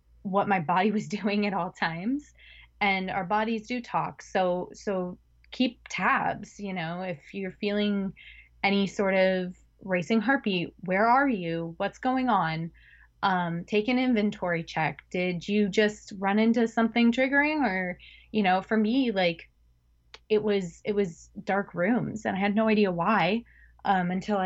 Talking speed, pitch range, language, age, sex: 160 wpm, 180-220 Hz, English, 20-39, female